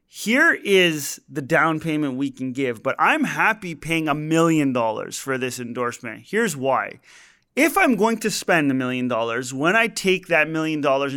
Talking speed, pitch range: 185 wpm, 140-190 Hz